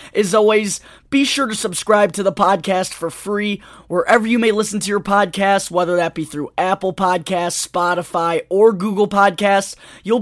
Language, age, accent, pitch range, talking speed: English, 20-39, American, 165-205 Hz, 170 wpm